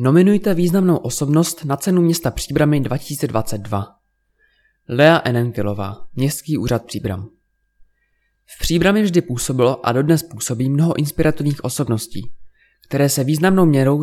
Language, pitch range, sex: Czech, 120-170 Hz, male